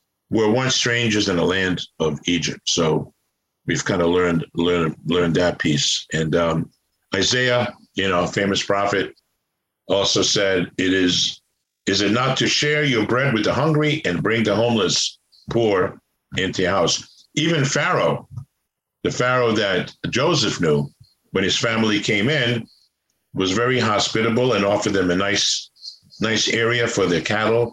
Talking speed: 155 wpm